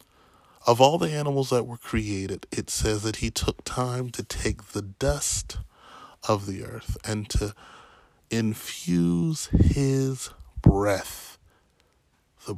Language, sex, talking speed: English, male, 125 wpm